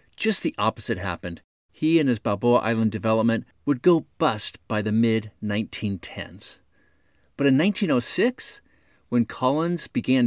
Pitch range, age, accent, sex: 110-165 Hz, 50-69, American, male